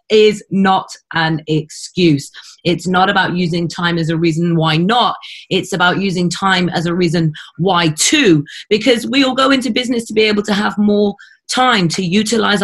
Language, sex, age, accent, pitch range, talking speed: English, female, 30-49, British, 180-230 Hz, 180 wpm